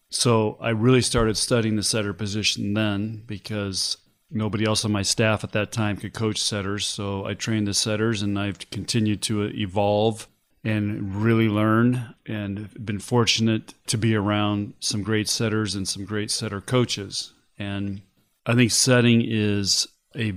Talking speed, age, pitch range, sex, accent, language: 160 wpm, 40-59, 105-115 Hz, male, American, English